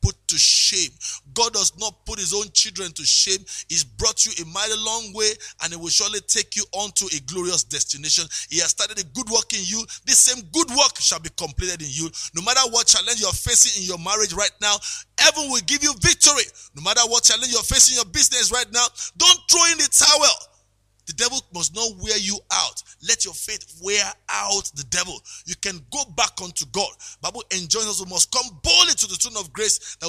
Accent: Nigerian